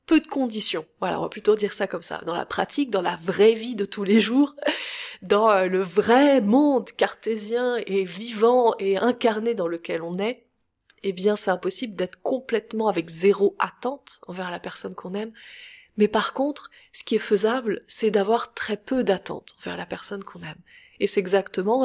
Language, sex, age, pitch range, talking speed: French, female, 20-39, 195-250 Hz, 190 wpm